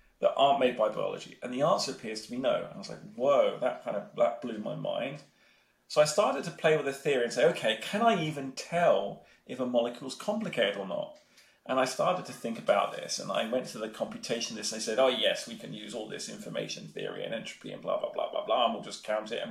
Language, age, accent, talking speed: English, 30-49, British, 260 wpm